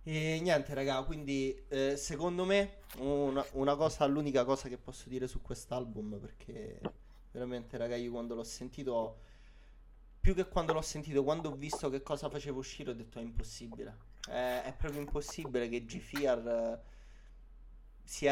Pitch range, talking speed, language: 120-150 Hz, 155 wpm, Italian